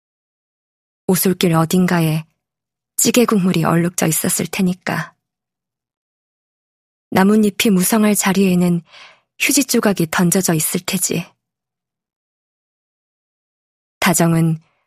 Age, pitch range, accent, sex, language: 20-39, 170-210 Hz, native, female, Korean